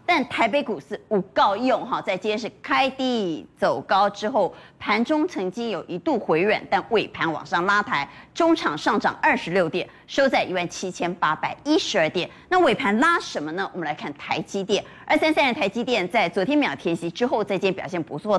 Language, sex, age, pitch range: Chinese, female, 30-49, 185-280 Hz